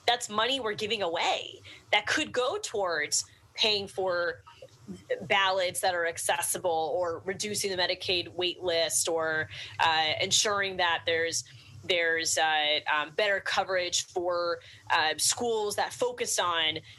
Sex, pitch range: female, 165-215 Hz